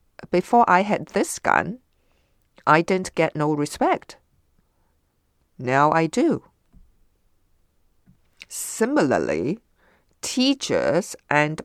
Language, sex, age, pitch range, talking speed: English, female, 50-69, 145-180 Hz, 80 wpm